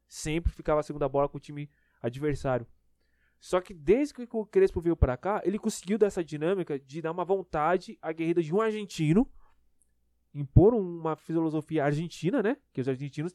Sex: male